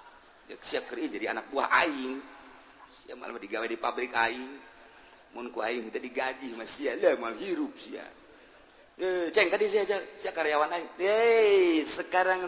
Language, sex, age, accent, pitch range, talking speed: Indonesian, male, 40-59, native, 145-200 Hz, 100 wpm